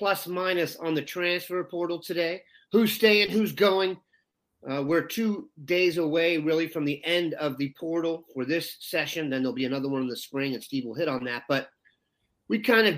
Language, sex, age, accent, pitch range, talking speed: English, male, 40-59, American, 145-180 Hz, 205 wpm